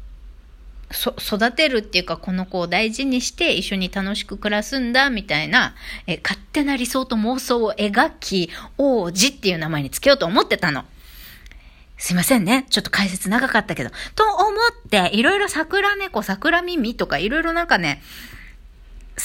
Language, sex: Japanese, female